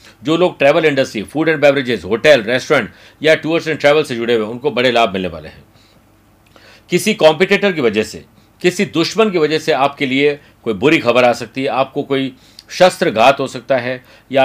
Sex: male